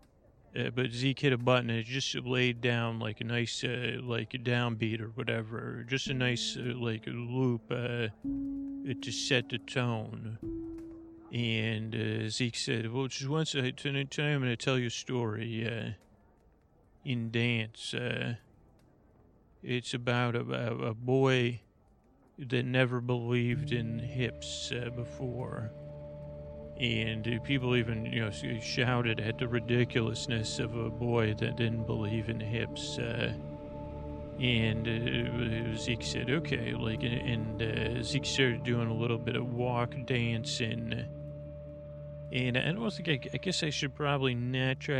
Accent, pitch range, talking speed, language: American, 115-130 Hz, 150 wpm, English